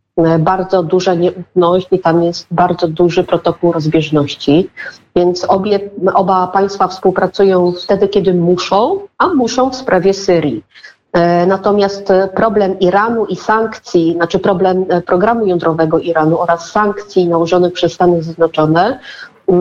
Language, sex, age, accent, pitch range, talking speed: Polish, female, 40-59, native, 170-195 Hz, 125 wpm